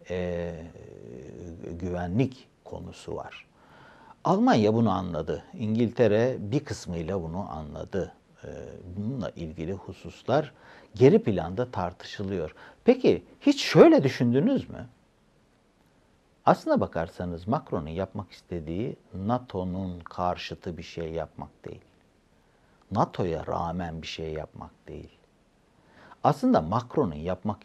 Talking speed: 95 wpm